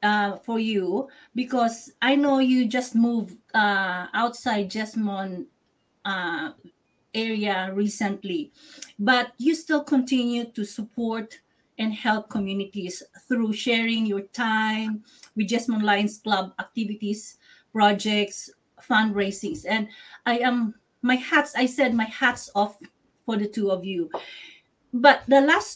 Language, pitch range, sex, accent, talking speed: English, 205-250 Hz, female, Filipino, 125 wpm